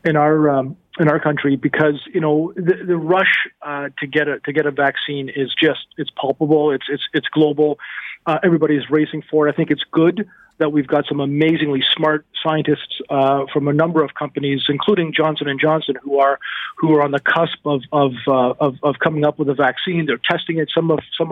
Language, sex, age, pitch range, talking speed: English, male, 40-59, 145-165 Hz, 215 wpm